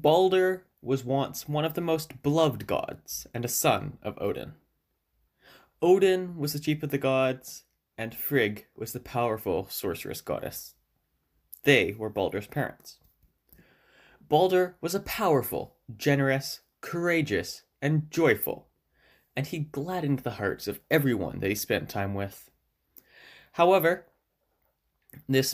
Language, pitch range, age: English, 110-155 Hz, 20-39